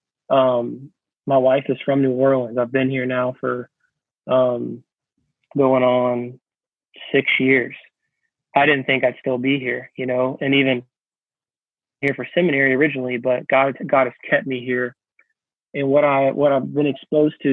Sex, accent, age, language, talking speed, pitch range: male, American, 20-39, English, 160 wpm, 130-140 Hz